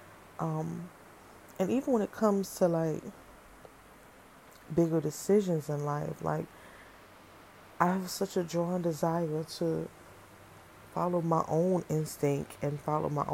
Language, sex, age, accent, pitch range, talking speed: English, female, 20-39, American, 155-190 Hz, 120 wpm